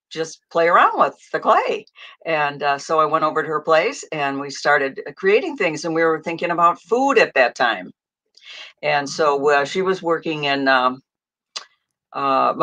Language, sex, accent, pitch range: English, female, American, 145-200 Hz